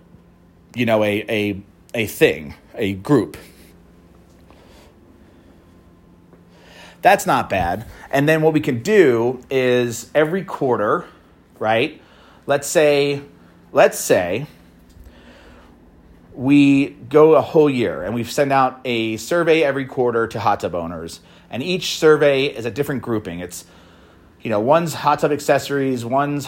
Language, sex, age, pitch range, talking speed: English, male, 30-49, 85-145 Hz, 125 wpm